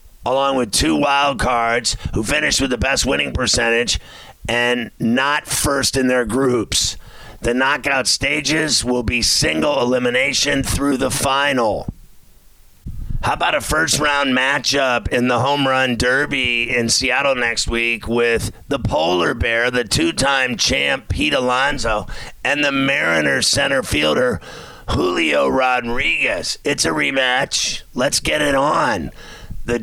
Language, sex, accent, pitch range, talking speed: English, male, American, 120-140 Hz, 135 wpm